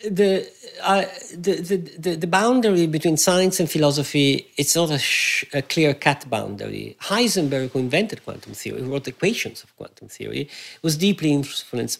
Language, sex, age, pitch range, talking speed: English, male, 50-69, 145-195 Hz, 160 wpm